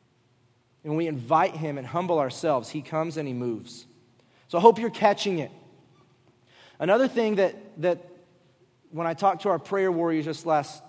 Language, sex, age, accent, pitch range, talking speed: English, male, 30-49, American, 140-200 Hz, 170 wpm